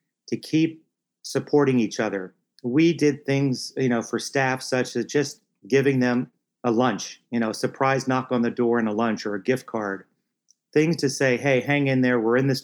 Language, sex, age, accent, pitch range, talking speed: English, male, 40-59, American, 115-140 Hz, 210 wpm